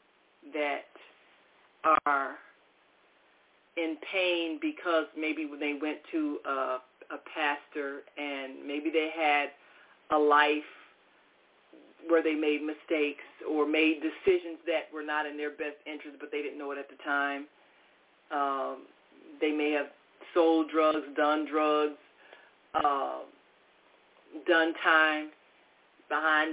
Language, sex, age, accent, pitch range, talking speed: English, female, 40-59, American, 150-185 Hz, 120 wpm